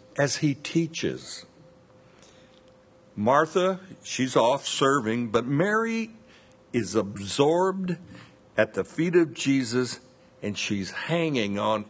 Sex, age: male, 60-79